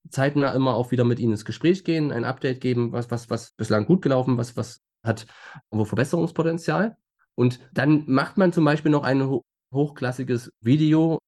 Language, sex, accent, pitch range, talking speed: German, male, German, 125-160 Hz, 180 wpm